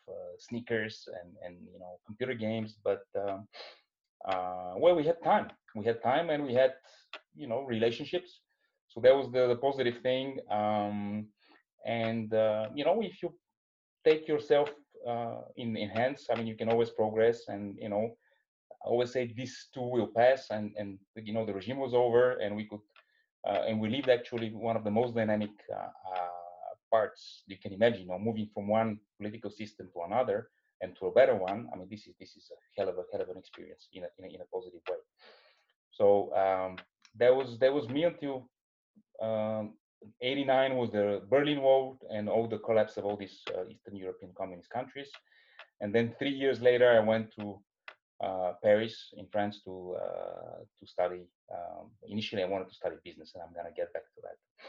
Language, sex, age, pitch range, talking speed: English, male, 30-49, 105-135 Hz, 195 wpm